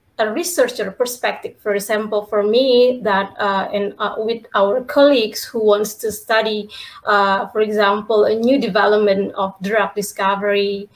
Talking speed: 150 wpm